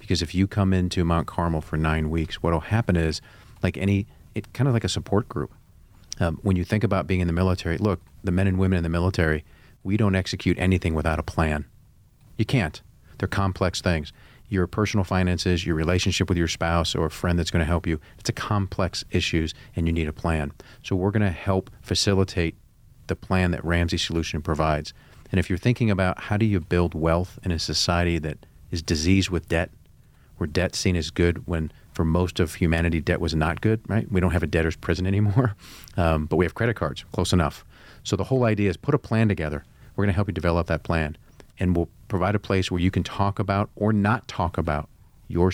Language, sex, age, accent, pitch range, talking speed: English, male, 40-59, American, 85-105 Hz, 215 wpm